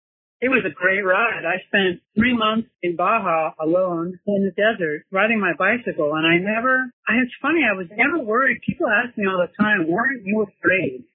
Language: English